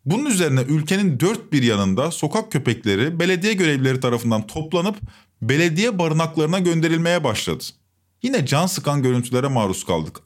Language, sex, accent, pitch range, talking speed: Turkish, male, native, 120-180 Hz, 130 wpm